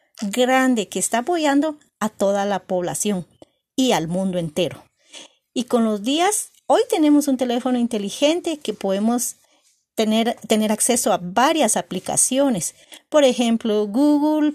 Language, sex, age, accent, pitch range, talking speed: Spanish, female, 40-59, American, 205-285 Hz, 130 wpm